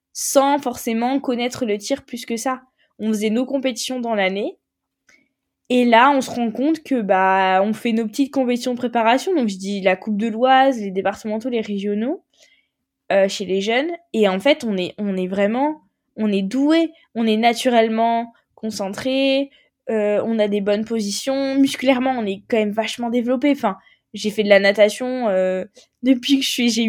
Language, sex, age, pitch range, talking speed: French, female, 20-39, 200-260 Hz, 185 wpm